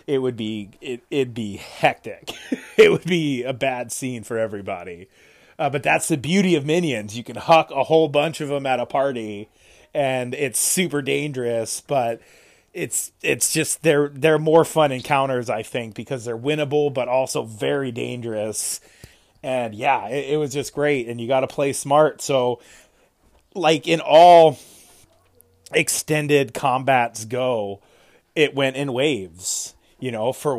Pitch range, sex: 110-145 Hz, male